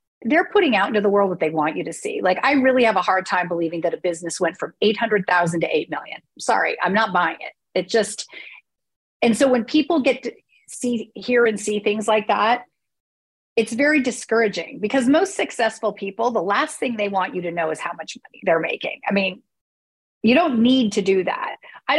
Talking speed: 215 wpm